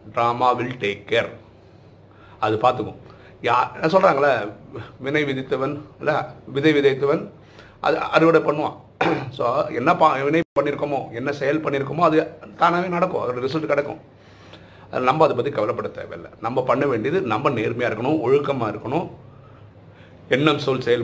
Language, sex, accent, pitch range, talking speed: Tamil, male, native, 105-140 Hz, 130 wpm